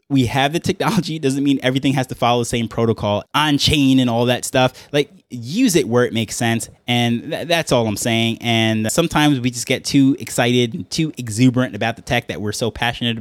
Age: 20-39